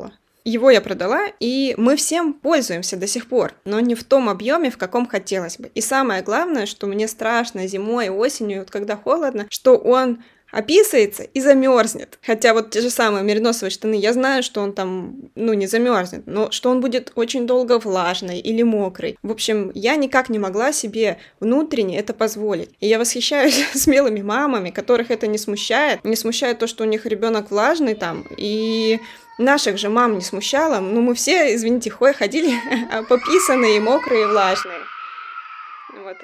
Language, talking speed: Russian, 170 wpm